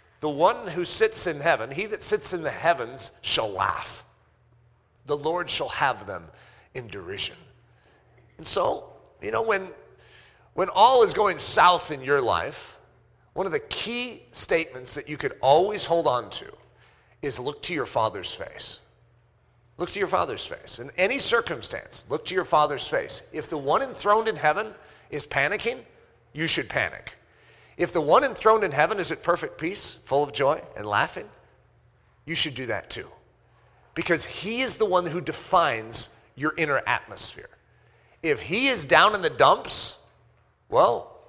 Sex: male